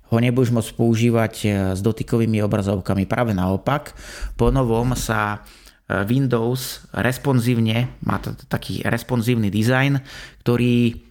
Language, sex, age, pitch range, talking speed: Slovak, male, 30-49, 105-125 Hz, 105 wpm